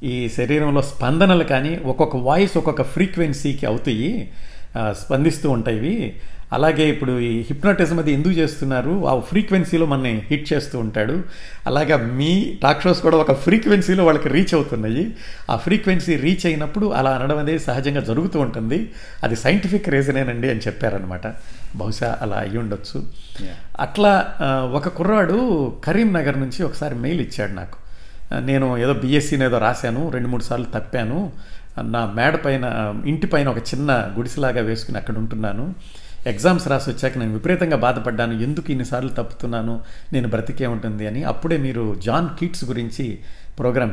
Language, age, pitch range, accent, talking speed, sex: Telugu, 50-69, 115-155 Hz, native, 135 wpm, male